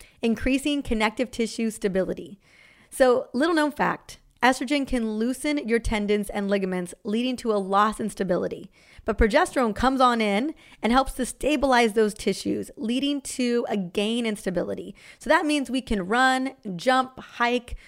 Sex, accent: female, American